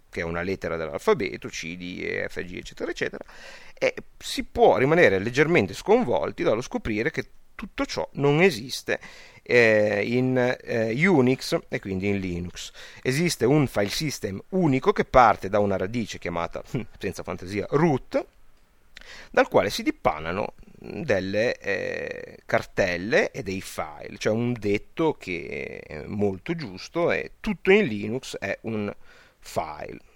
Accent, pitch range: native, 105-175 Hz